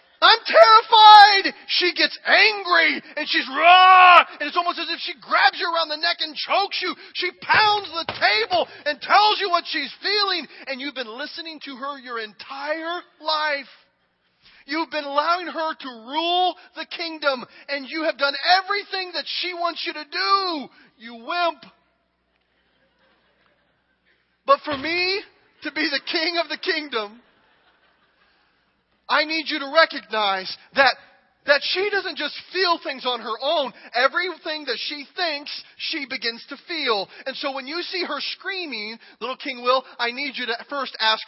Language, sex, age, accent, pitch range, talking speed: English, male, 40-59, American, 250-345 Hz, 160 wpm